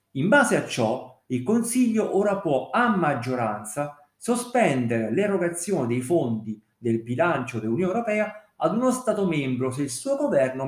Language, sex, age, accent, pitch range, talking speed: Italian, male, 50-69, native, 115-185 Hz, 145 wpm